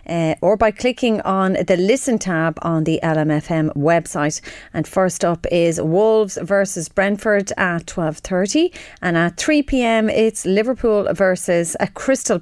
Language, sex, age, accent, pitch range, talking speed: English, female, 30-49, Irish, 165-220 Hz, 150 wpm